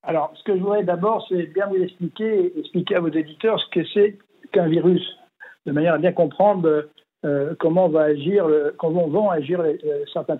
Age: 60-79